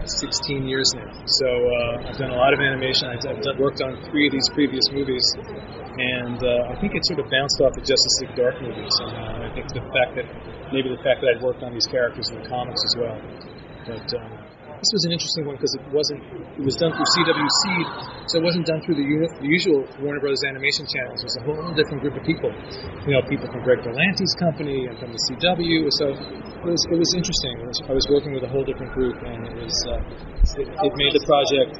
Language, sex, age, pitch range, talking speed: English, male, 30-49, 130-165 Hz, 240 wpm